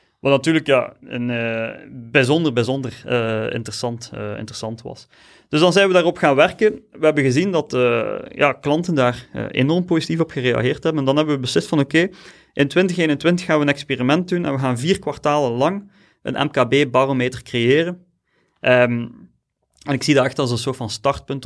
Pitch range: 125-160 Hz